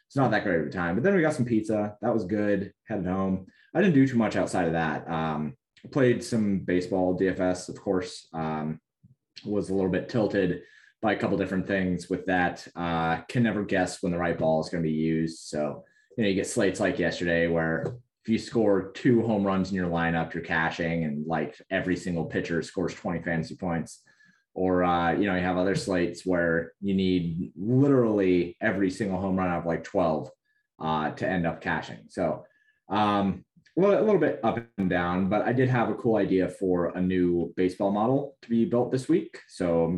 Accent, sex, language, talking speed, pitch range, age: American, male, English, 210 wpm, 85-105 Hz, 20-39